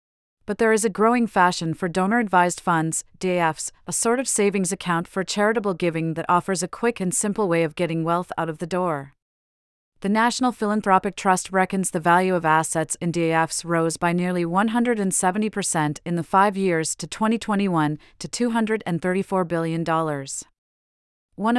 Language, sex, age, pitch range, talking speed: English, female, 40-59, 165-200 Hz, 155 wpm